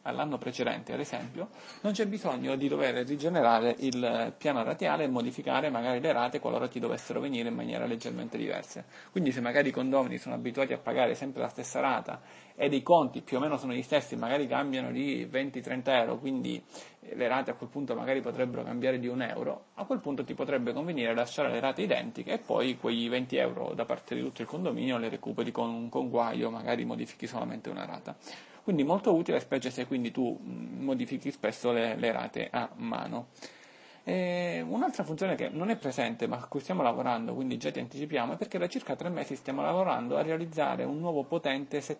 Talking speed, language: 200 wpm, Italian